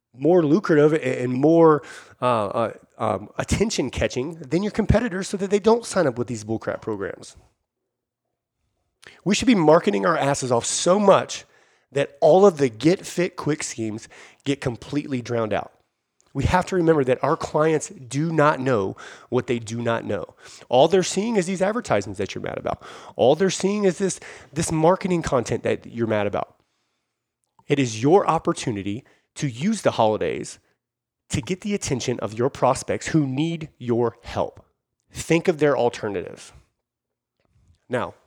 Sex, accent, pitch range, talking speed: male, American, 110-165 Hz, 165 wpm